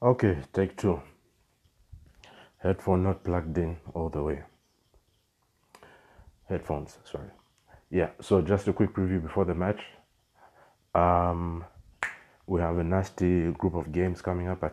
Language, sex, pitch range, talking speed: English, male, 80-90 Hz, 130 wpm